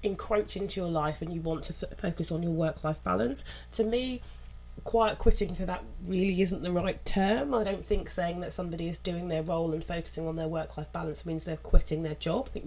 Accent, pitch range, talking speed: British, 150-175 Hz, 225 wpm